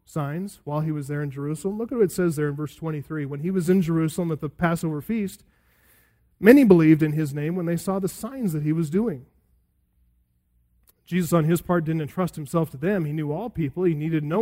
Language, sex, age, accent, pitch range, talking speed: English, male, 30-49, American, 150-210 Hz, 230 wpm